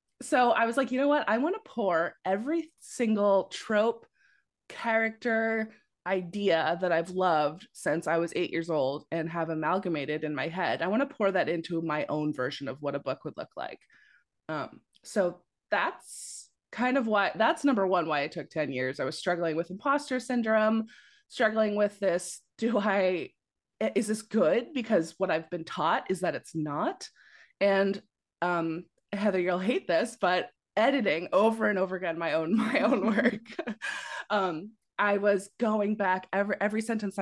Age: 20-39